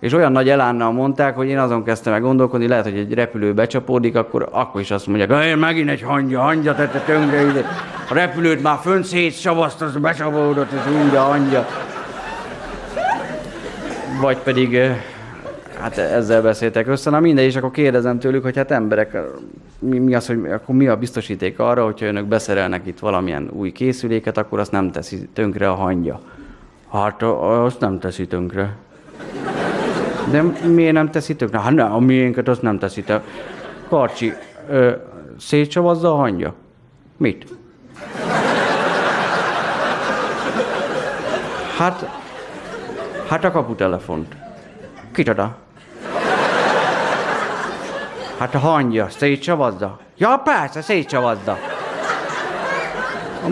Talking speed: 125 wpm